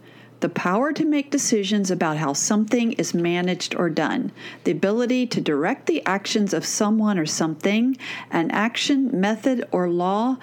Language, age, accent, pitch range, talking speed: English, 40-59, American, 190-260 Hz, 155 wpm